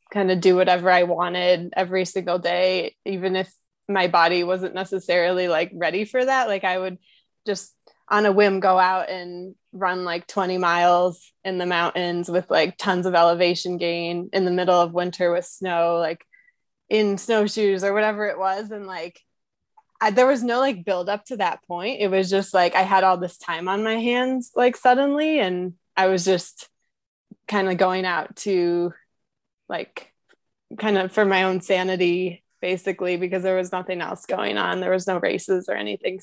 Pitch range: 180-200 Hz